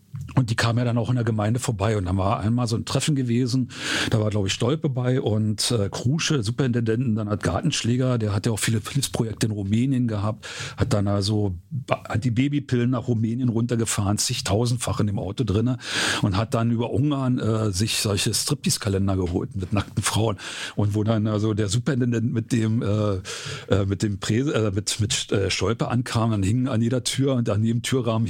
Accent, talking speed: German, 200 wpm